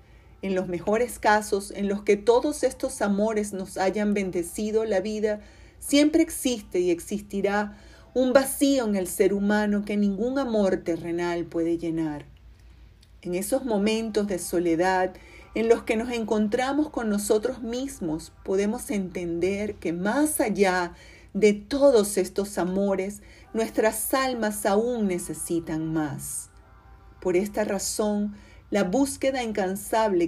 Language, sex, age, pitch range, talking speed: Spanish, female, 40-59, 180-225 Hz, 125 wpm